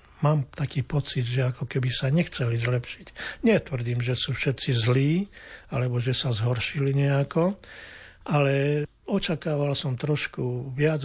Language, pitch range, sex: Slovak, 125-140 Hz, male